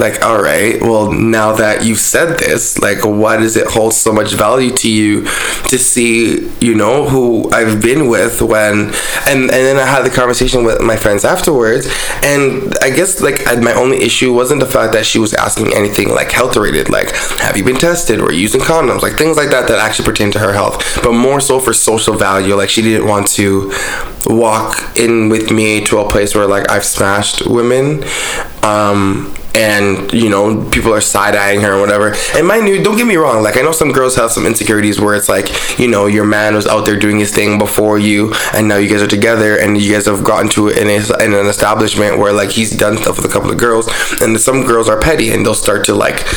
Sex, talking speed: male, 225 wpm